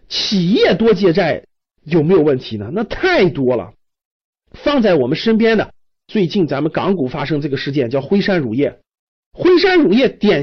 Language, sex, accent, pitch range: Chinese, male, native, 155-230 Hz